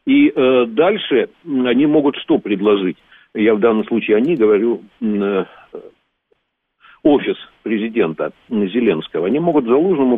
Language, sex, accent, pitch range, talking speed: Russian, male, native, 115-155 Hz, 120 wpm